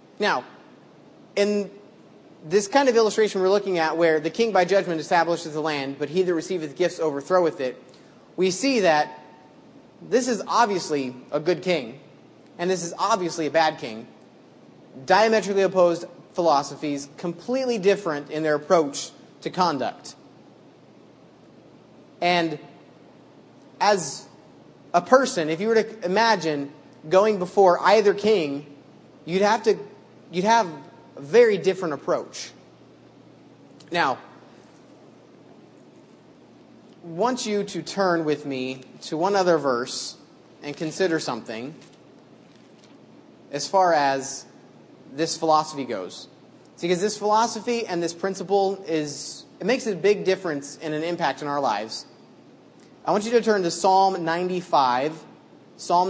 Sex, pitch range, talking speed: male, 155-200 Hz, 130 wpm